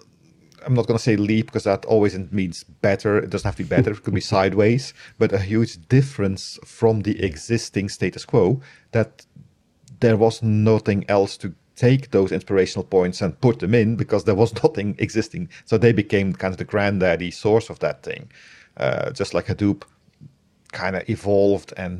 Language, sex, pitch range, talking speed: English, male, 90-115 Hz, 185 wpm